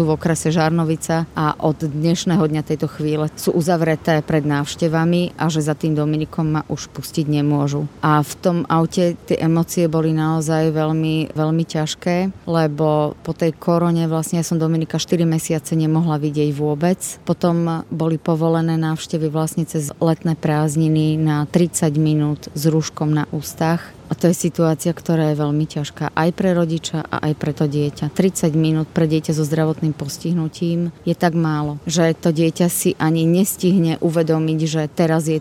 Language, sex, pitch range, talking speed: Slovak, female, 155-170 Hz, 165 wpm